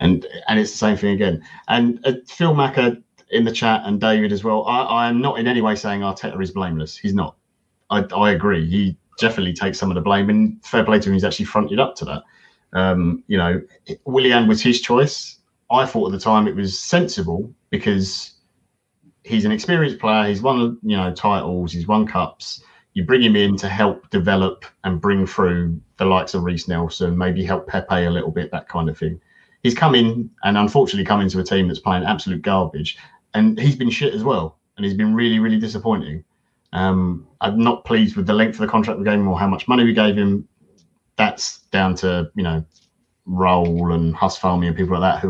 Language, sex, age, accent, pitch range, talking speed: English, male, 30-49, British, 95-115 Hz, 215 wpm